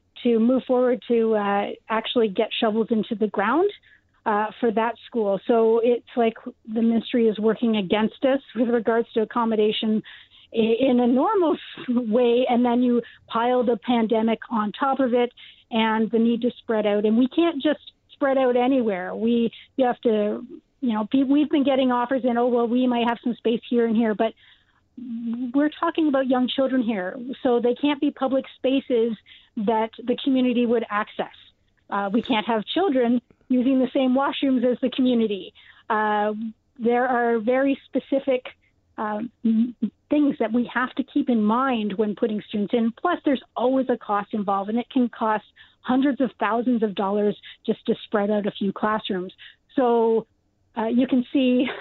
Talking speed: 175 wpm